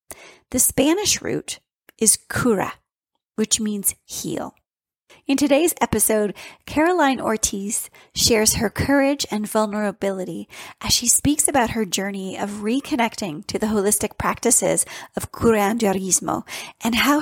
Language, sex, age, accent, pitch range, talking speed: English, female, 30-49, American, 185-240 Hz, 120 wpm